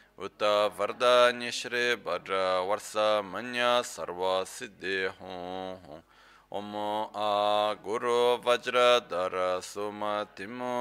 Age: 20-39